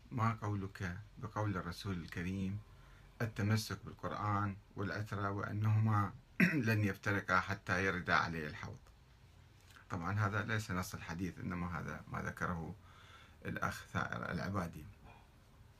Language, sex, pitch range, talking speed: Arabic, male, 95-110 Hz, 105 wpm